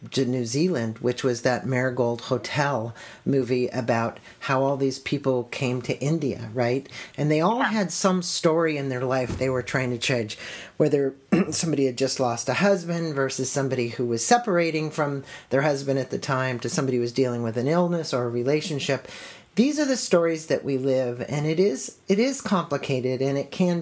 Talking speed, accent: 190 wpm, American